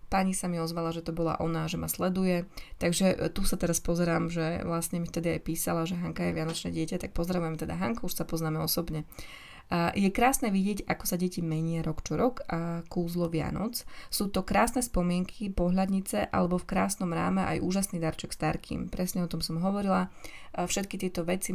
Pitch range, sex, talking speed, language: 165-185 Hz, female, 195 wpm, Slovak